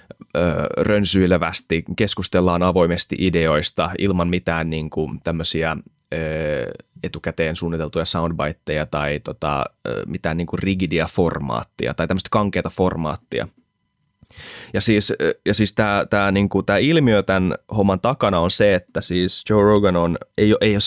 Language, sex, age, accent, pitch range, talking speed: Finnish, male, 20-39, native, 85-100 Hz, 130 wpm